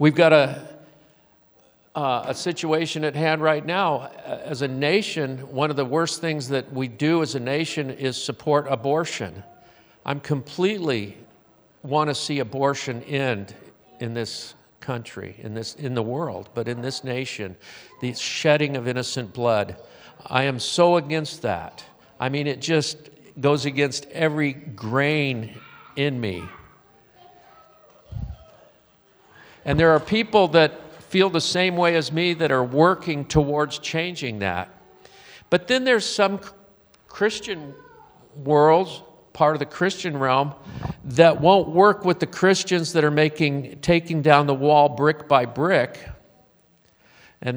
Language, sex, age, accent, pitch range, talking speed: English, male, 50-69, American, 135-165 Hz, 140 wpm